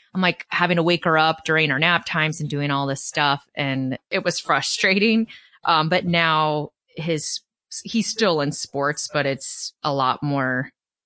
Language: English